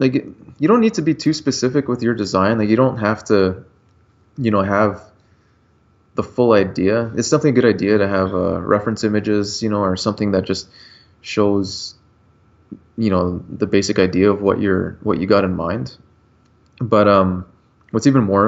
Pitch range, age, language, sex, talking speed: 95-110 Hz, 20-39, English, male, 185 wpm